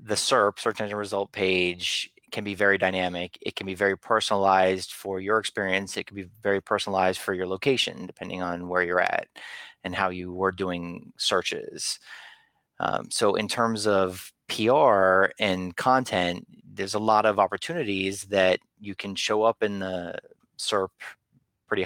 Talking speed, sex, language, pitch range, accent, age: 160 wpm, male, English, 90-100 Hz, American, 30-49